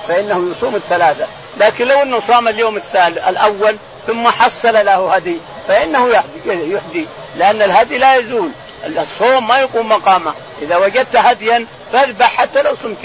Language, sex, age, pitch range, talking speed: Arabic, male, 50-69, 190-235 Hz, 145 wpm